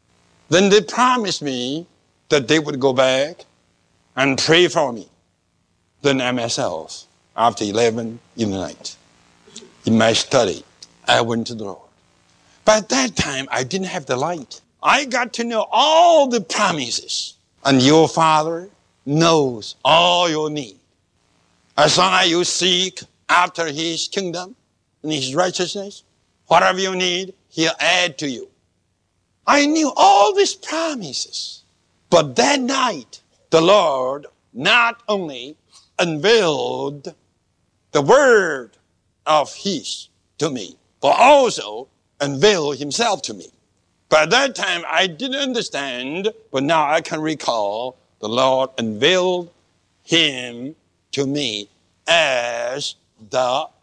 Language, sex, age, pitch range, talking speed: English, male, 60-79, 115-190 Hz, 125 wpm